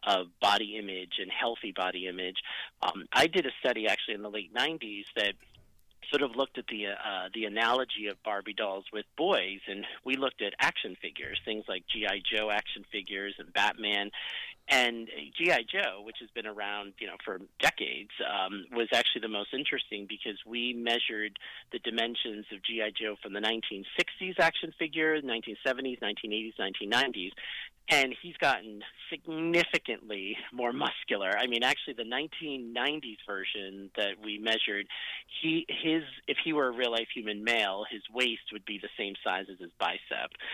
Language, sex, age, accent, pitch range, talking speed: English, male, 40-59, American, 105-125 Hz, 165 wpm